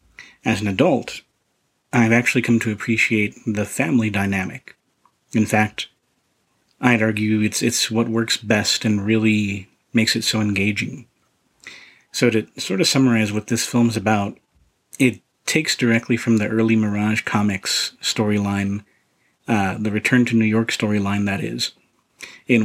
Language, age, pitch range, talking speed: English, 40-59, 105-120 Hz, 145 wpm